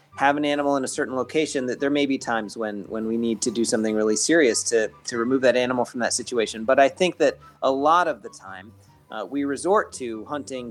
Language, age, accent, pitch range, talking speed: English, 30-49, American, 125-150 Hz, 240 wpm